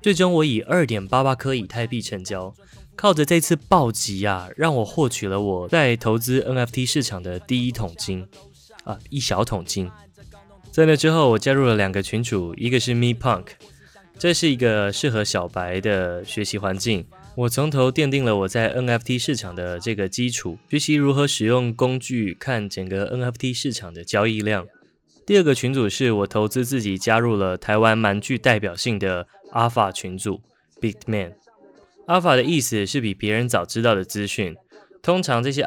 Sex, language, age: male, Chinese, 20-39